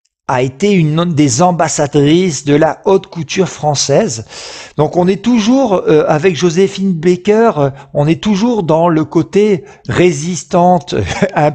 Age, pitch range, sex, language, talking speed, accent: 50-69, 145-190 Hz, male, French, 135 wpm, French